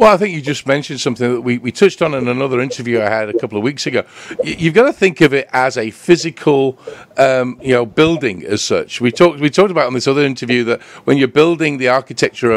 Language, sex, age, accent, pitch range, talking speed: English, male, 50-69, British, 120-155 Hz, 255 wpm